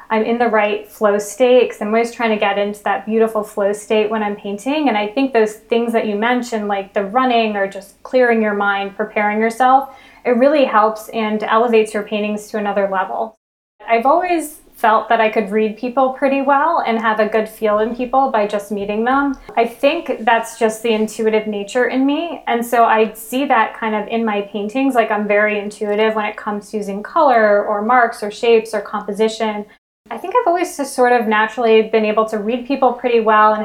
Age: 20-39